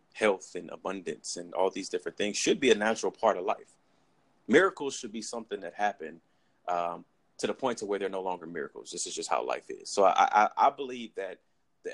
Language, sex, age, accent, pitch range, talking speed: English, male, 30-49, American, 95-145 Hz, 220 wpm